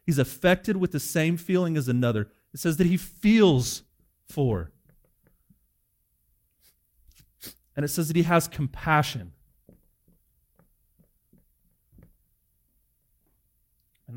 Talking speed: 95 wpm